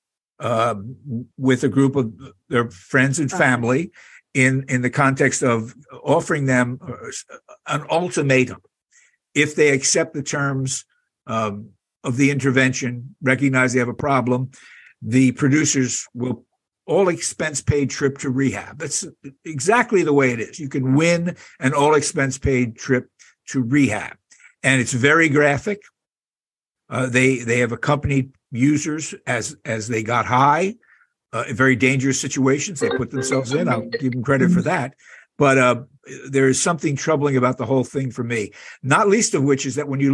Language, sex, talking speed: English, male, 160 wpm